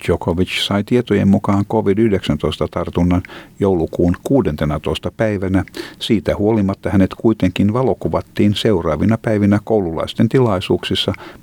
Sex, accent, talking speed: male, native, 90 wpm